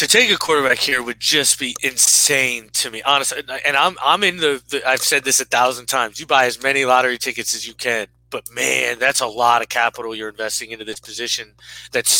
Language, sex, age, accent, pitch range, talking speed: English, male, 20-39, American, 115-140 Hz, 230 wpm